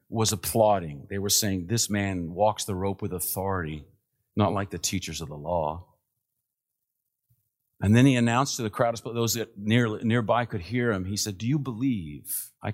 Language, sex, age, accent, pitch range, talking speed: English, male, 50-69, American, 95-125 Hz, 180 wpm